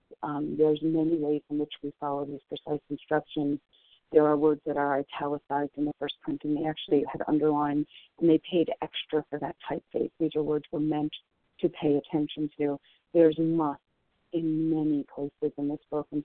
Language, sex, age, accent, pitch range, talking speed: English, female, 40-59, American, 150-165 Hz, 190 wpm